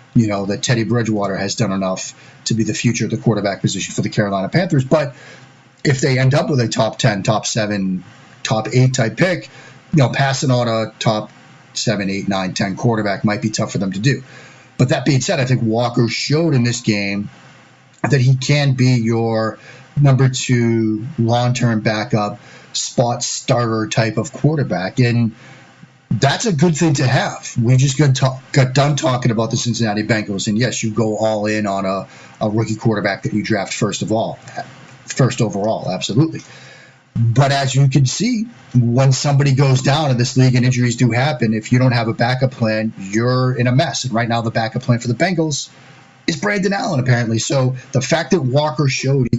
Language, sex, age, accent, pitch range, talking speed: English, male, 30-49, American, 110-135 Hz, 195 wpm